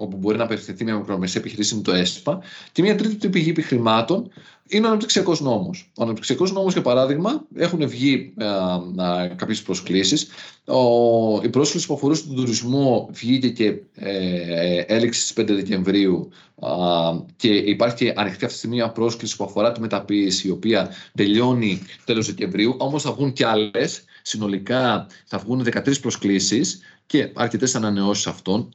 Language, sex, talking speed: Greek, male, 150 wpm